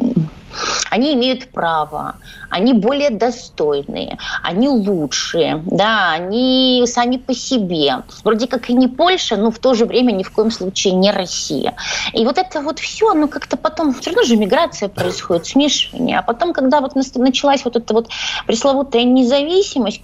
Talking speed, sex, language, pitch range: 160 wpm, female, Russian, 185-250 Hz